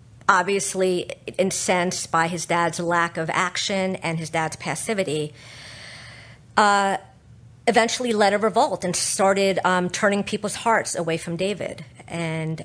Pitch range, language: 155-190 Hz, English